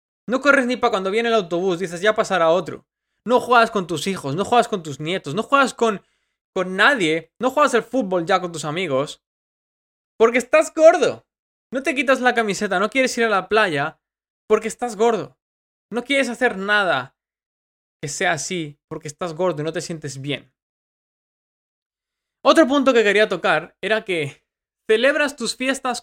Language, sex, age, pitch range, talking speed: Spanish, male, 20-39, 170-245 Hz, 180 wpm